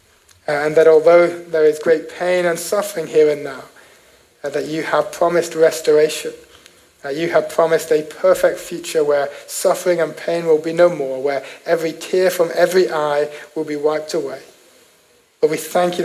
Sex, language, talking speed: male, English, 170 wpm